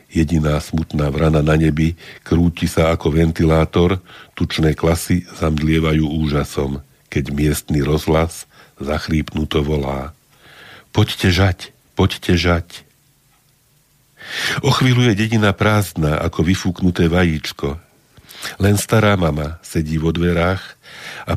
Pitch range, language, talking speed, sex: 80-95 Hz, Slovak, 100 wpm, male